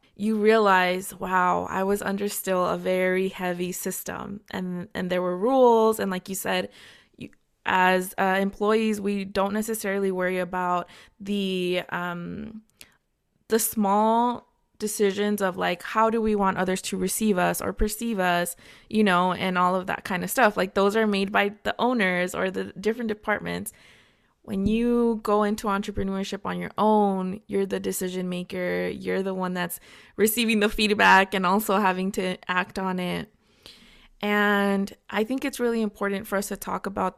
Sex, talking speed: female, 170 wpm